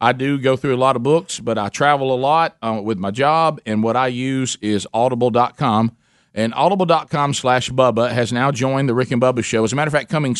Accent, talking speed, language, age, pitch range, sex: American, 235 wpm, English, 40-59, 110-135 Hz, male